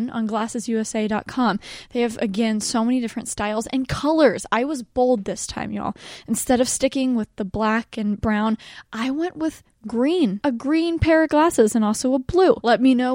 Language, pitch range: English, 220-300 Hz